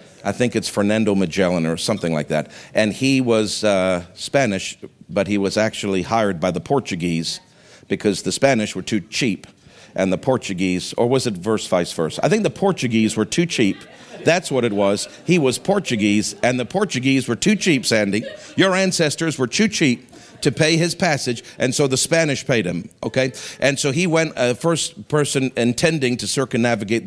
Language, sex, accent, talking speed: English, male, American, 185 wpm